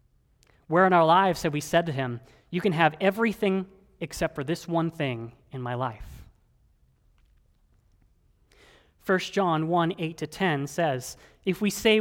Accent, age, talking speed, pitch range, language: American, 30-49, 155 wpm, 140-190 Hz, English